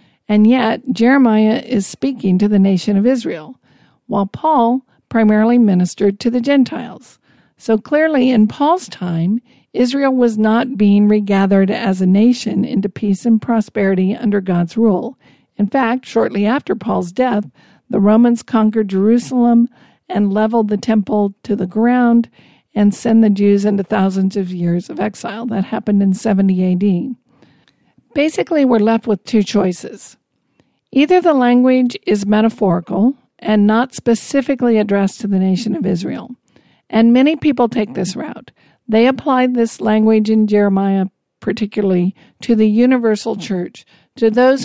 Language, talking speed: English, 145 wpm